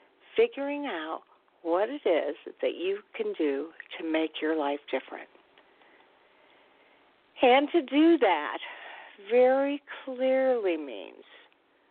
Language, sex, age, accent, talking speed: English, female, 50-69, American, 105 wpm